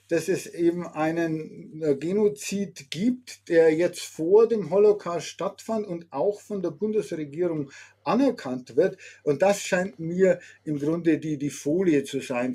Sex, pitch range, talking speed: male, 150-200 Hz, 145 wpm